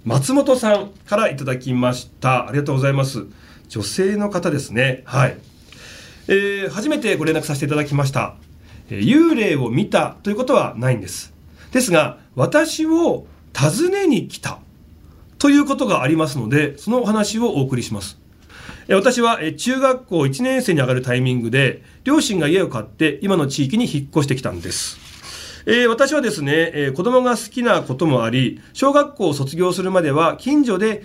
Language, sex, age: Japanese, male, 40-59